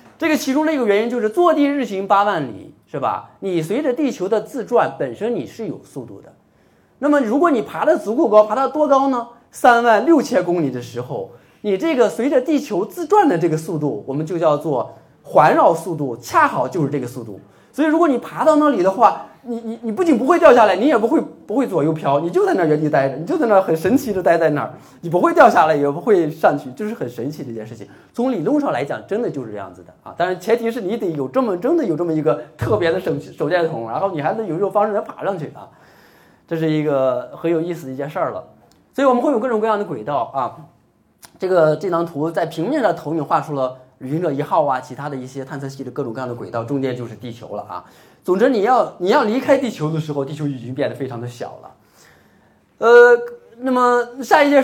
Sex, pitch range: male, 155-250 Hz